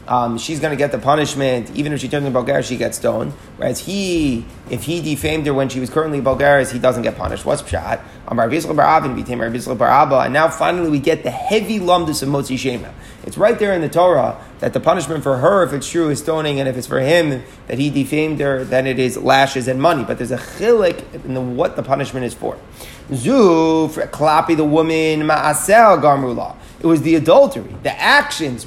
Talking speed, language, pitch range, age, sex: 205 wpm, English, 135-165 Hz, 30-49, male